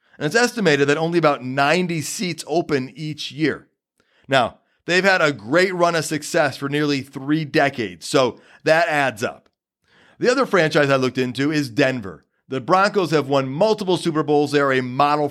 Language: English